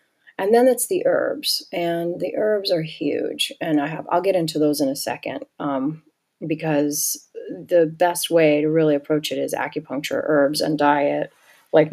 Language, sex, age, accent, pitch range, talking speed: English, female, 30-49, American, 155-185 Hz, 175 wpm